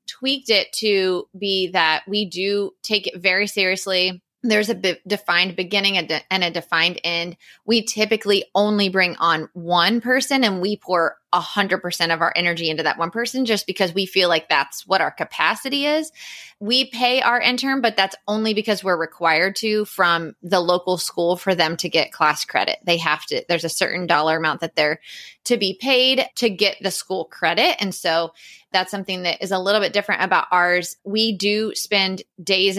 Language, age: English, 20-39